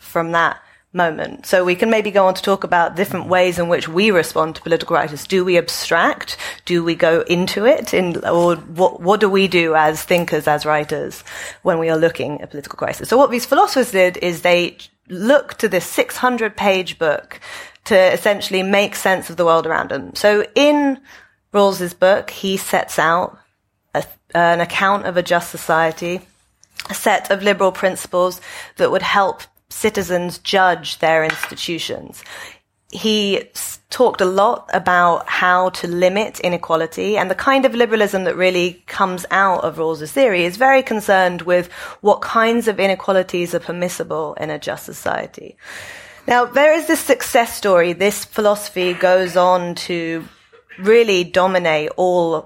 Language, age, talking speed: English, 30-49, 165 wpm